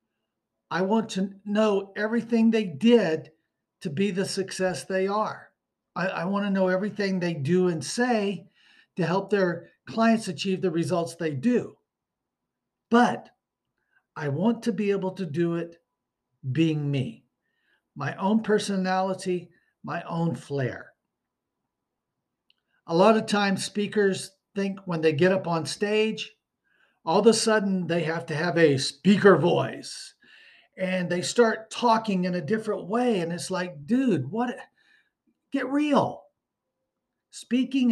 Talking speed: 140 wpm